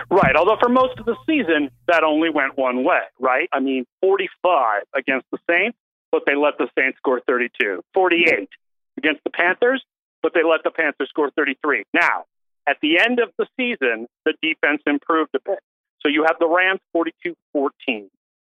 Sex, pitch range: male, 130-180 Hz